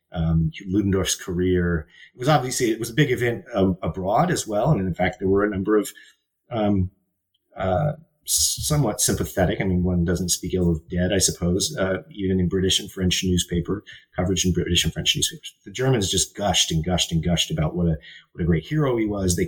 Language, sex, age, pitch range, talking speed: English, male, 30-49, 85-95 Hz, 210 wpm